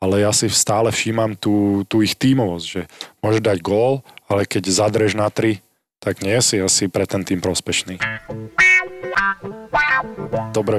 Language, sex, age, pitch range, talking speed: Slovak, male, 20-39, 100-115 Hz, 150 wpm